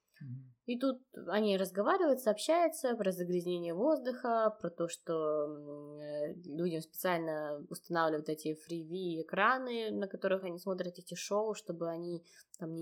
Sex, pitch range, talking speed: female, 165-205 Hz, 125 wpm